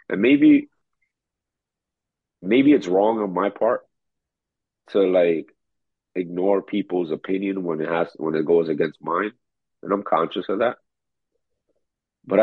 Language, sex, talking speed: English, male, 130 wpm